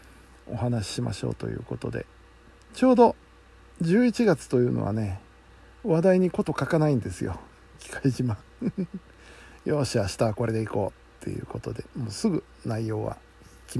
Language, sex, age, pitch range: Japanese, male, 60-79, 95-130 Hz